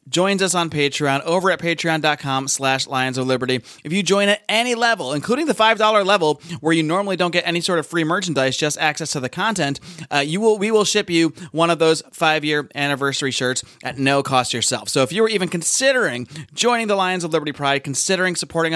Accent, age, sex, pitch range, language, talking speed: American, 30-49, male, 135-170 Hz, English, 205 wpm